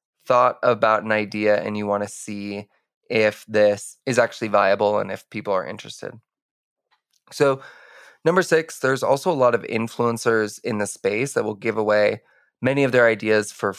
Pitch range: 105-125 Hz